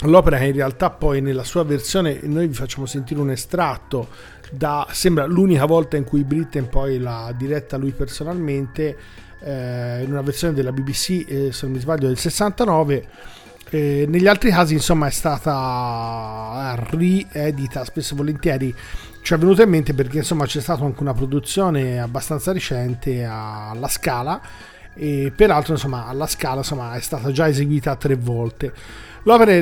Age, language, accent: 40-59, Italian, native